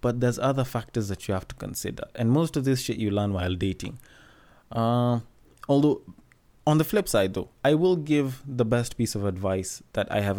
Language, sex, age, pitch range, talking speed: English, male, 20-39, 95-120 Hz, 210 wpm